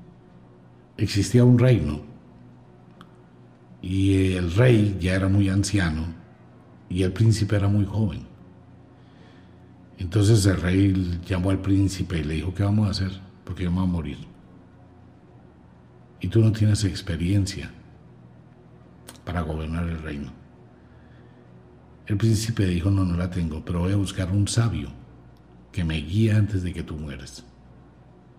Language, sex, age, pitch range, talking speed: Spanish, male, 60-79, 75-110 Hz, 135 wpm